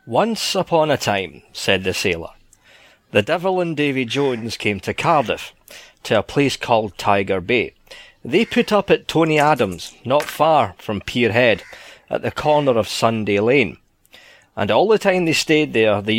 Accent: British